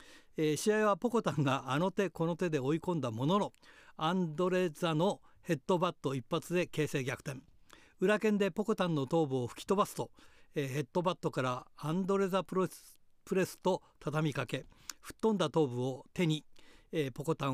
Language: Japanese